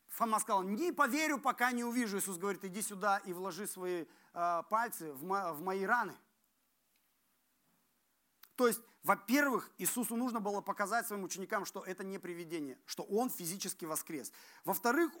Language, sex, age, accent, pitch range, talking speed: Russian, male, 40-59, native, 175-225 Hz, 150 wpm